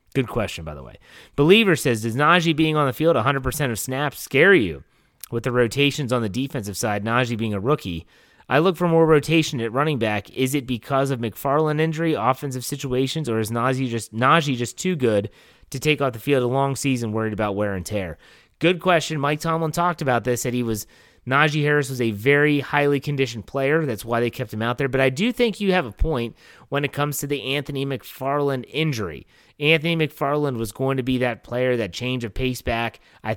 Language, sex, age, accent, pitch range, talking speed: English, male, 30-49, American, 115-145 Hz, 215 wpm